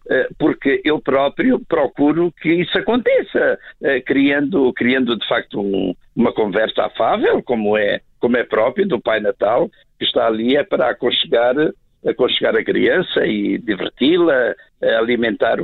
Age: 60-79